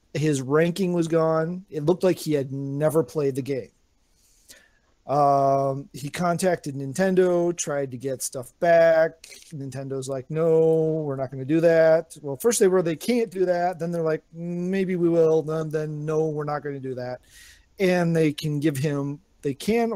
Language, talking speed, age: English, 185 wpm, 40-59